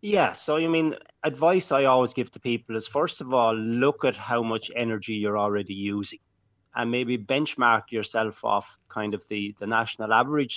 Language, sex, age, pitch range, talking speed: English, male, 30-49, 110-130 Hz, 185 wpm